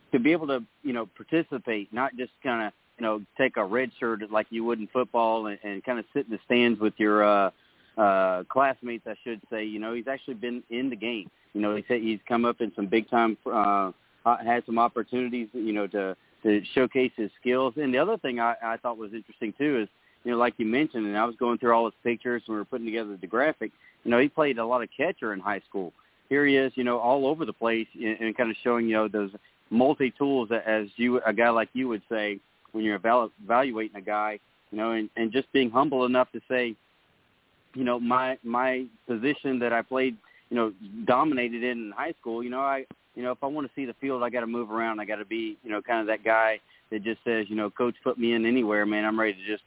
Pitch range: 110-125 Hz